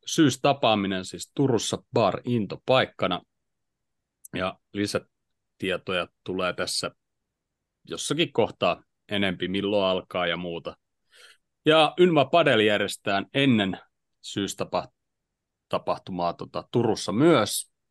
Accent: native